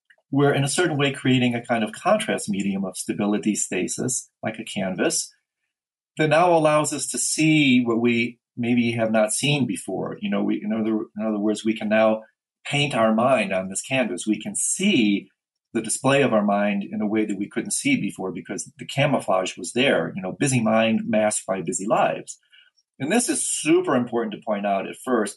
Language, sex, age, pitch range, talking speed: English, male, 40-59, 105-140 Hz, 200 wpm